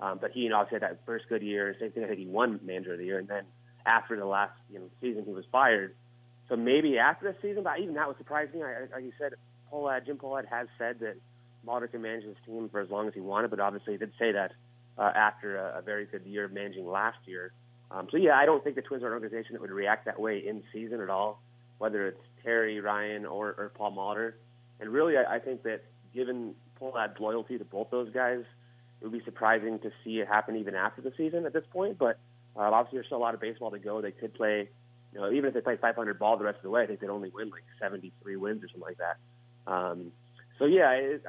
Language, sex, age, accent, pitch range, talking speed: English, male, 30-49, American, 105-125 Hz, 260 wpm